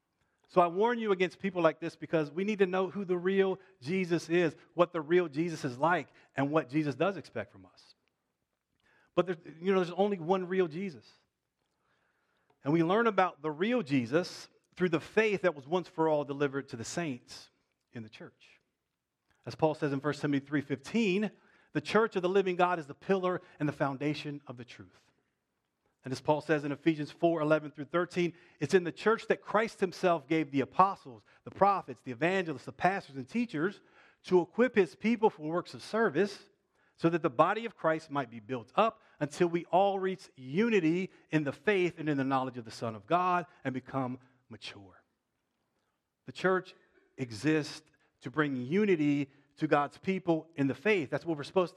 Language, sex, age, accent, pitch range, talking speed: English, male, 40-59, American, 145-185 Hz, 190 wpm